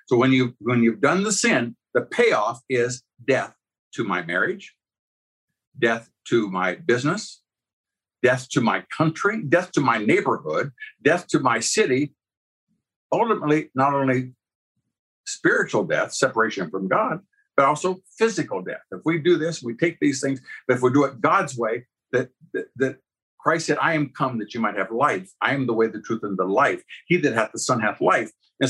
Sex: male